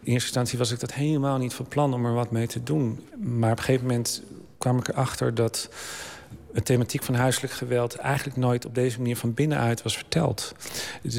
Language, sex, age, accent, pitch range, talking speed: Dutch, male, 40-59, Dutch, 115-135 Hz, 215 wpm